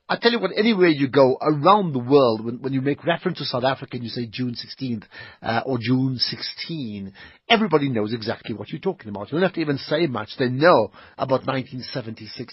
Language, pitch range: English, 120-155 Hz